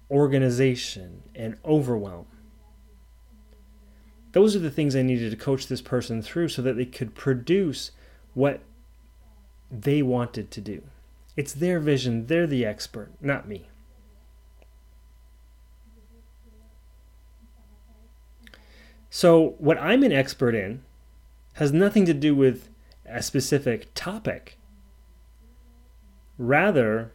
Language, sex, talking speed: English, male, 105 wpm